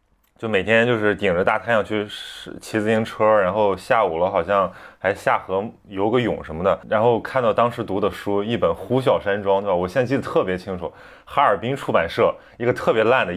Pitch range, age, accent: 90-110 Hz, 20-39, Polish